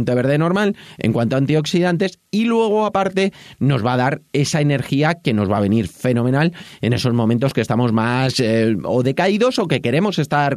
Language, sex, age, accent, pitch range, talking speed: Spanish, male, 30-49, Spanish, 130-180 Hz, 195 wpm